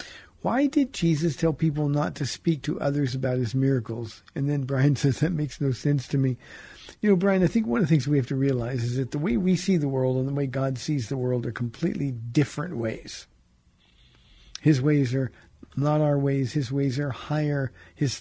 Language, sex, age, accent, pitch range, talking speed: English, male, 50-69, American, 130-170 Hz, 220 wpm